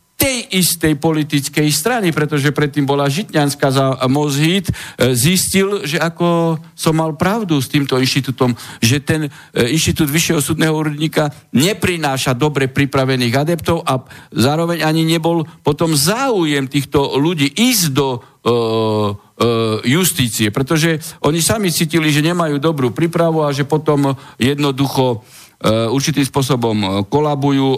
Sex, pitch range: male, 110-150 Hz